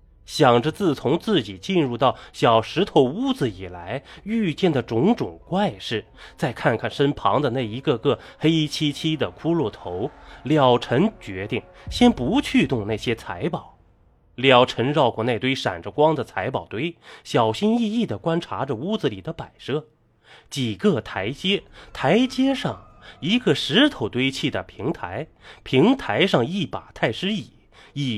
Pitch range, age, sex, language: 110-170 Hz, 20-39, male, Chinese